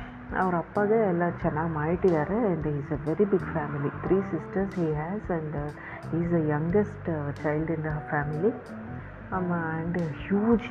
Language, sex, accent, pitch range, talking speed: Kannada, female, native, 155-200 Hz, 180 wpm